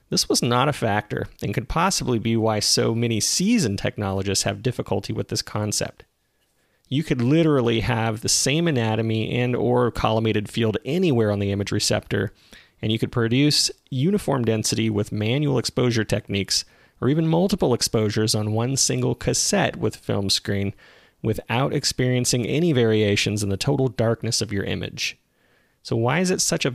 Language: English